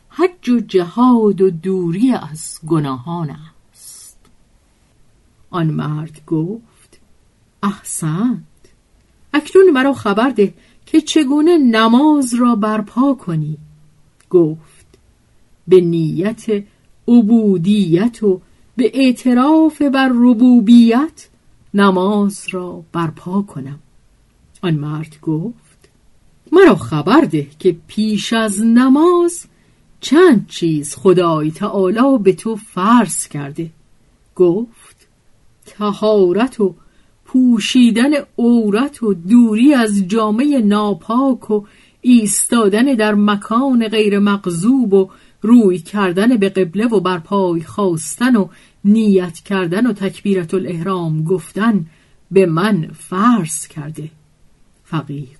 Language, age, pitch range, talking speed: Persian, 50-69, 165-235 Hz, 95 wpm